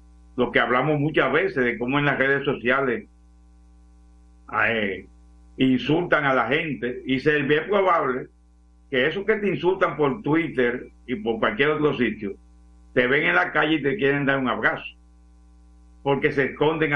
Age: 50-69